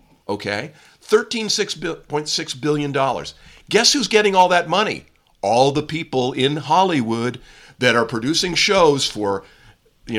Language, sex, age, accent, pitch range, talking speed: English, male, 50-69, American, 120-170 Hz, 120 wpm